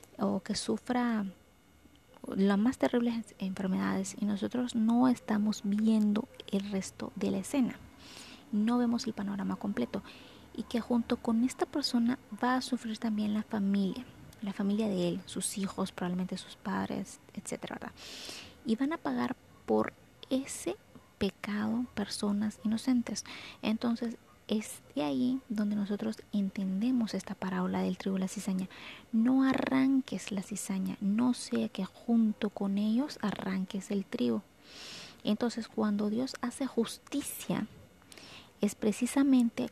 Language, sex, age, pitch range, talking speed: Spanish, female, 20-39, 200-240 Hz, 130 wpm